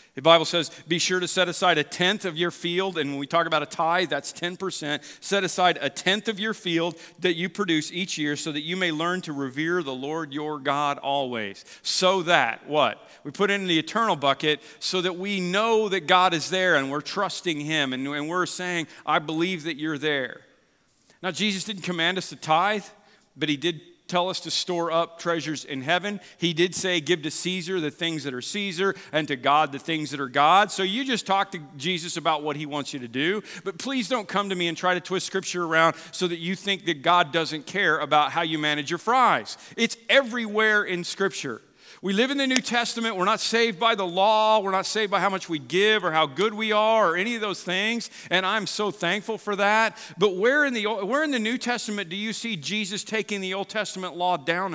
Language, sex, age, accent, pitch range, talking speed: English, male, 50-69, American, 155-200 Hz, 230 wpm